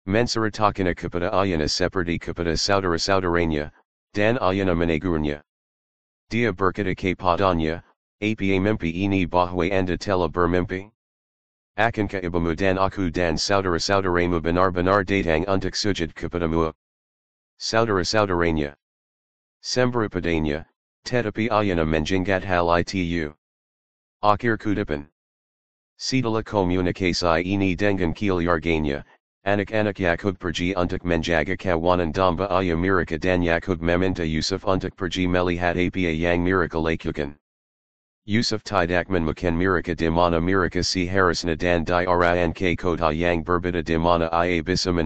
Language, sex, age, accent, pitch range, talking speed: English, male, 40-59, American, 85-95 Hz, 115 wpm